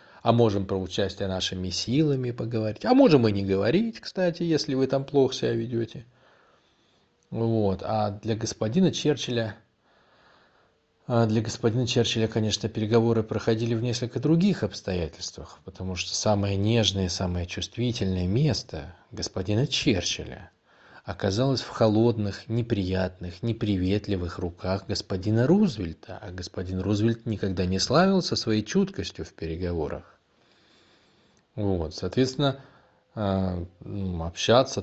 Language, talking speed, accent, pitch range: Russian, 110 wpm, native, 95-115 Hz